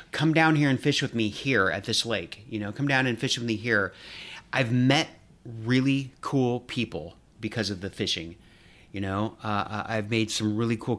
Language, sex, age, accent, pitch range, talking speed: English, male, 30-49, American, 105-130 Hz, 200 wpm